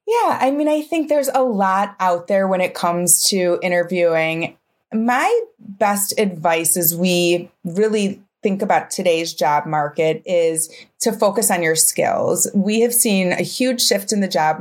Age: 30-49